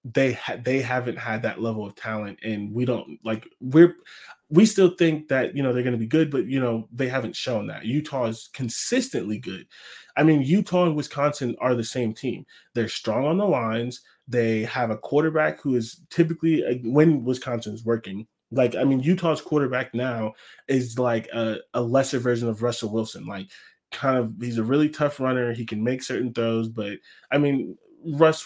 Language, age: English, 20-39